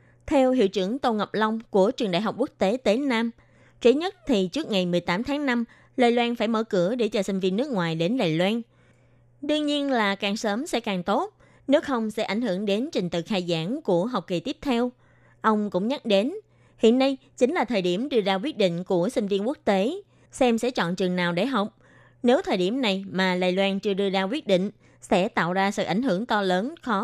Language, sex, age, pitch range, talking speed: Vietnamese, female, 20-39, 190-255 Hz, 235 wpm